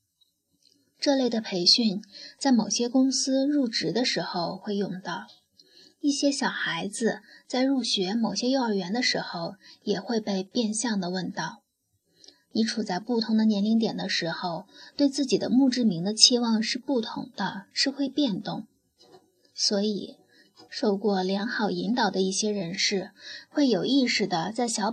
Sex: female